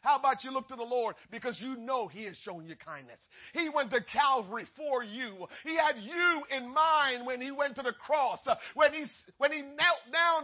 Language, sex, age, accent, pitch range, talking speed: English, male, 40-59, American, 270-335 Hz, 215 wpm